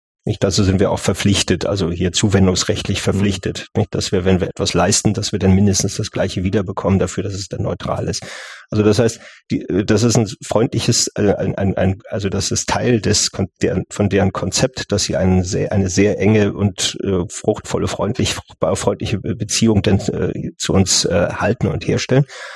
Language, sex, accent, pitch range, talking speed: German, male, German, 95-110 Hz, 190 wpm